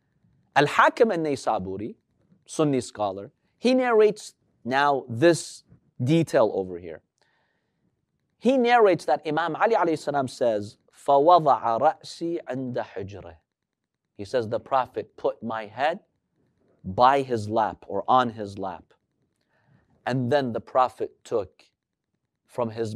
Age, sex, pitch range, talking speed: 40-59, male, 115-175 Hz, 105 wpm